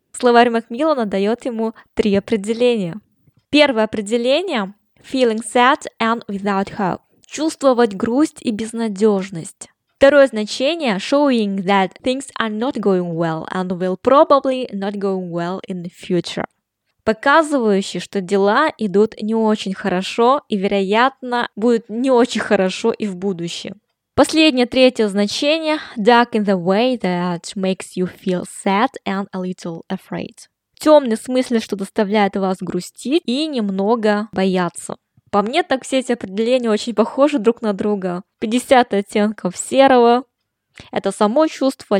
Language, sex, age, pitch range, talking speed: Russian, female, 20-39, 195-245 Hz, 115 wpm